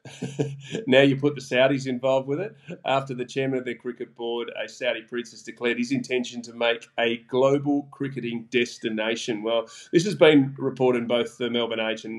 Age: 30-49